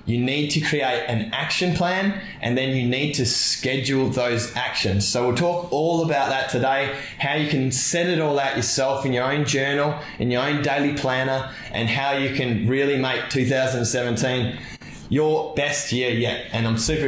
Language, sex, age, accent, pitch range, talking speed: English, male, 20-39, Australian, 125-155 Hz, 185 wpm